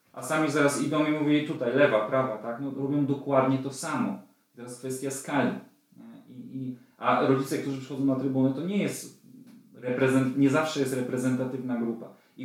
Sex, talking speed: male, 175 wpm